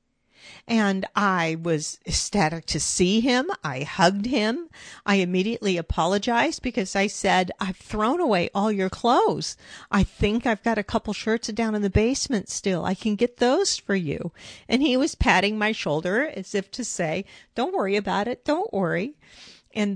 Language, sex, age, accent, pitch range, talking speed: English, female, 50-69, American, 175-225 Hz, 170 wpm